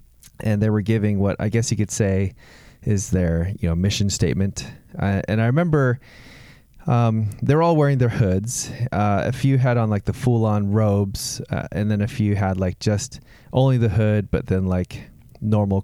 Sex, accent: male, American